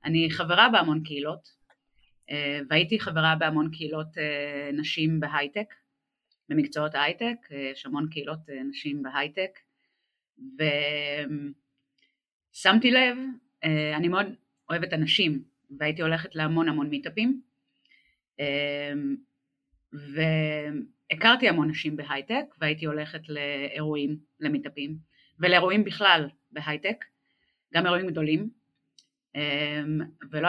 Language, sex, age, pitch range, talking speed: Hebrew, female, 30-49, 150-195 Hz, 85 wpm